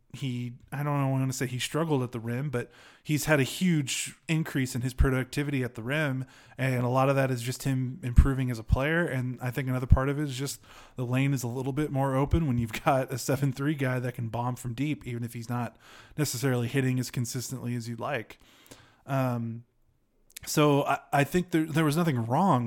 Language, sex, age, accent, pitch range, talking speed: English, male, 20-39, American, 120-140 Hz, 230 wpm